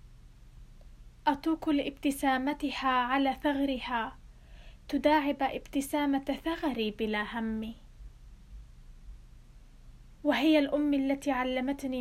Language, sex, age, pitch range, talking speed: Arabic, female, 20-39, 240-280 Hz, 65 wpm